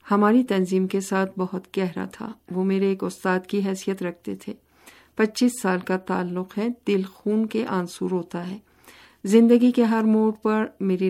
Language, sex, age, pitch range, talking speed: Urdu, female, 50-69, 180-205 Hz, 175 wpm